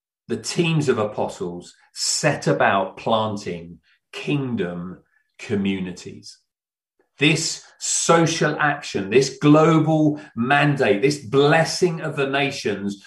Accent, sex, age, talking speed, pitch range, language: British, male, 40-59, 90 wpm, 115-175 Hz, English